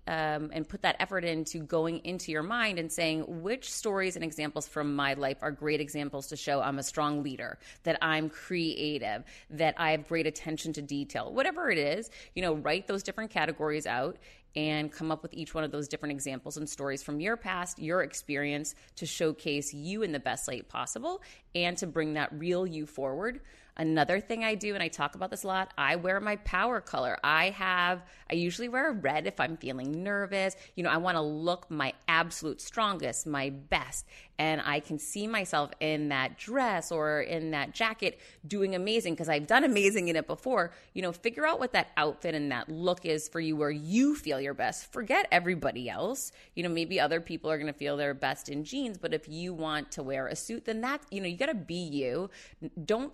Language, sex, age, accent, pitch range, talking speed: English, female, 30-49, American, 150-185 Hz, 215 wpm